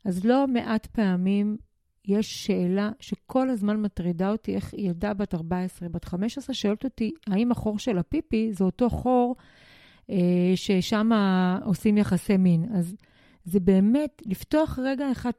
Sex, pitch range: female, 185-255 Hz